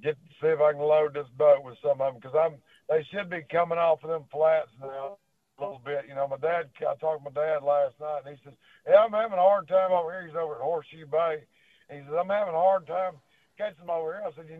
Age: 60-79